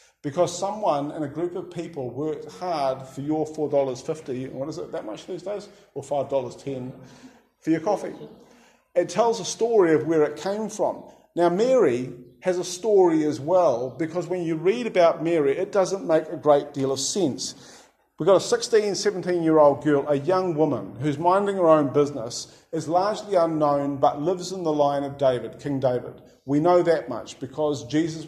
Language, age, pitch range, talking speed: English, 50-69, 145-185 Hz, 180 wpm